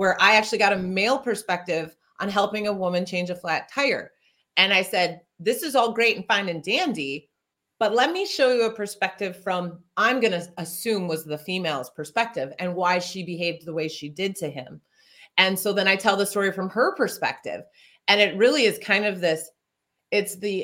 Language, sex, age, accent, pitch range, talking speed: English, female, 30-49, American, 175-220 Hz, 205 wpm